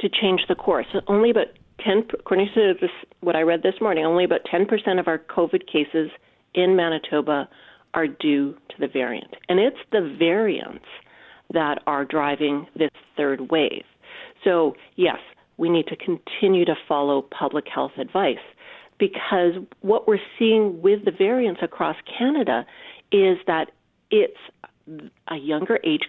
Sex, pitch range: female, 165-275 Hz